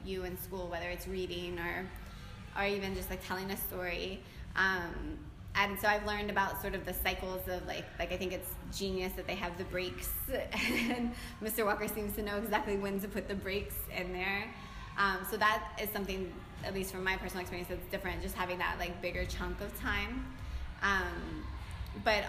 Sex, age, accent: female, 20-39, American